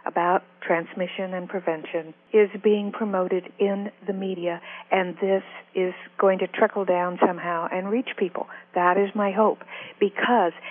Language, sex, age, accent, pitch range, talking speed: English, female, 60-79, American, 180-220 Hz, 145 wpm